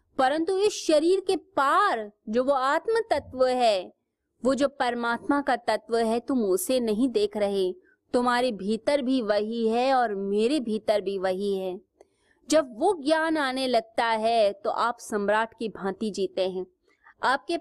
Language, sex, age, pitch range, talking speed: Hindi, female, 20-39, 210-295 Hz, 155 wpm